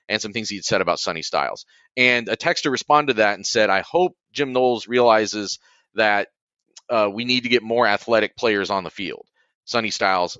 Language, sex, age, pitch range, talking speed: English, male, 30-49, 110-140 Hz, 210 wpm